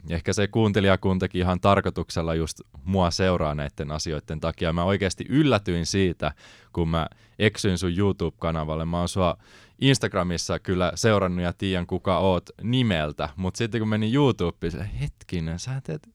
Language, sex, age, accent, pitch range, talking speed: Finnish, male, 20-39, native, 85-110 Hz, 150 wpm